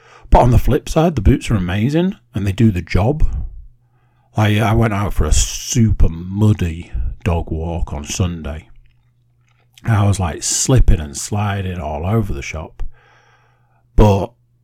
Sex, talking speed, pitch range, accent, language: male, 155 wpm, 95-120 Hz, British, English